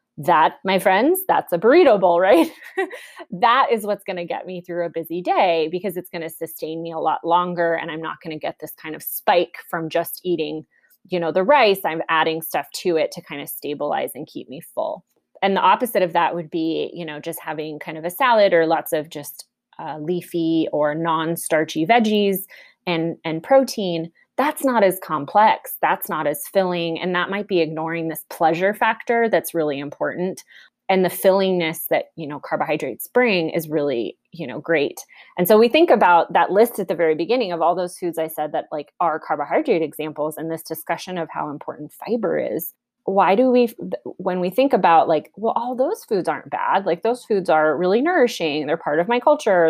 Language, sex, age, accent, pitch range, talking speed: English, female, 20-39, American, 160-200 Hz, 210 wpm